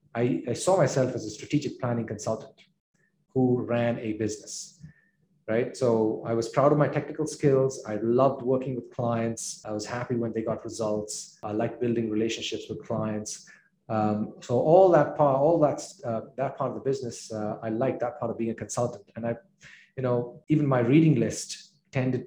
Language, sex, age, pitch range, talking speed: English, male, 30-49, 115-155 Hz, 190 wpm